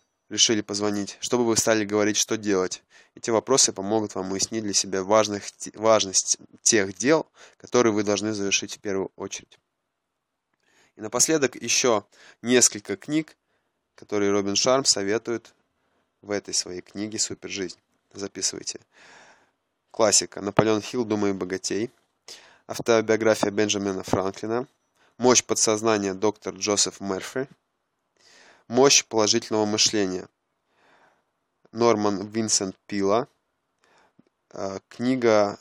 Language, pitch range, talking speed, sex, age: Russian, 100-115 Hz, 105 wpm, male, 20-39